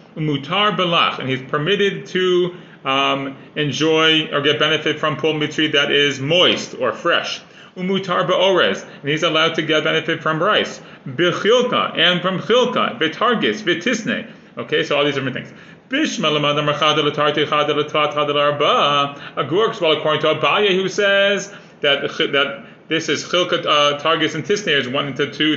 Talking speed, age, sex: 150 wpm, 30-49, male